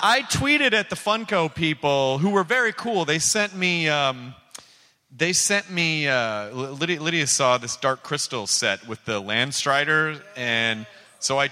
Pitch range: 145-200 Hz